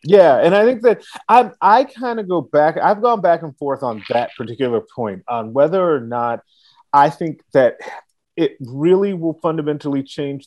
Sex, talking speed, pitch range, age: male, 190 wpm, 120-150 Hz, 30-49